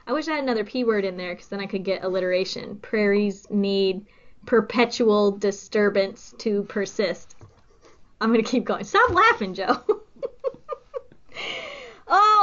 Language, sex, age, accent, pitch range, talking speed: English, female, 20-39, American, 205-255 Hz, 140 wpm